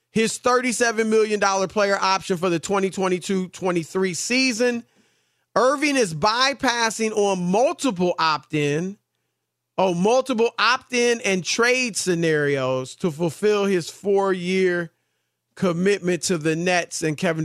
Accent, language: American, English